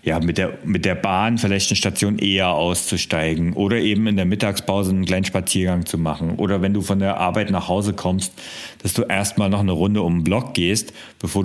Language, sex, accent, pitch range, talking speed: German, male, German, 90-110 Hz, 215 wpm